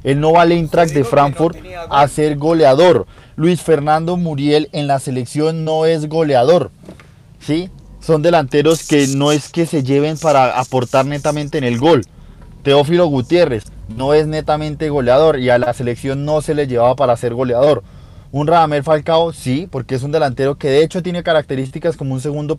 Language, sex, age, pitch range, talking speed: Spanish, male, 20-39, 130-160 Hz, 175 wpm